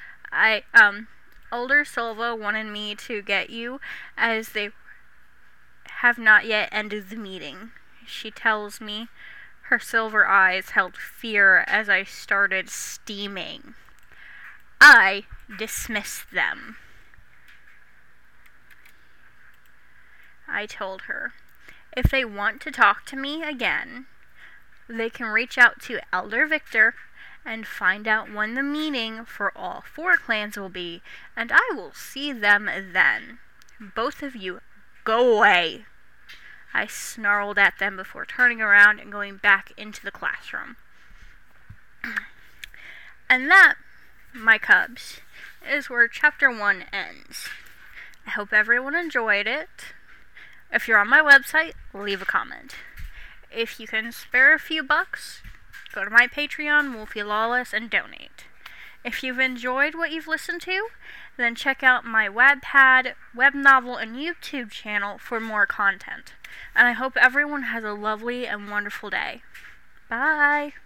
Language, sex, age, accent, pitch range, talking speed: English, female, 10-29, American, 210-275 Hz, 130 wpm